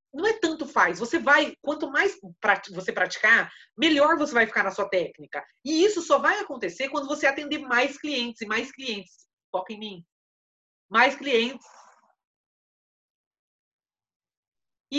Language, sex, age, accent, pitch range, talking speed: Portuguese, female, 30-49, Brazilian, 225-300 Hz, 145 wpm